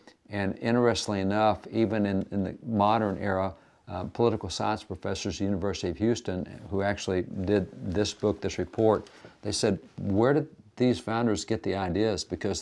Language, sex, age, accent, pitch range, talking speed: English, male, 50-69, American, 95-110 Hz, 165 wpm